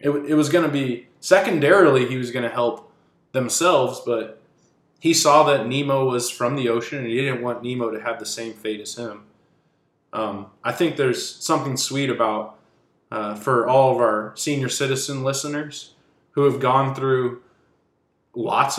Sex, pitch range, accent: male, 110-140 Hz, American